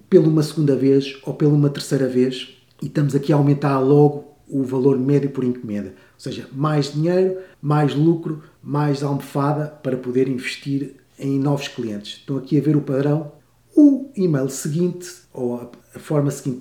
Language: Portuguese